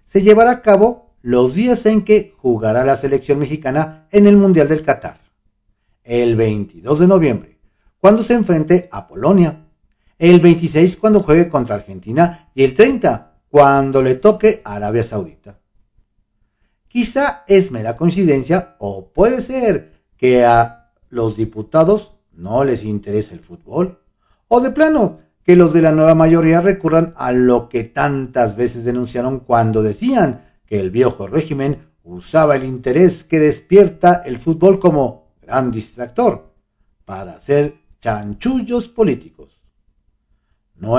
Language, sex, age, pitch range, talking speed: Spanish, male, 50-69, 115-190 Hz, 135 wpm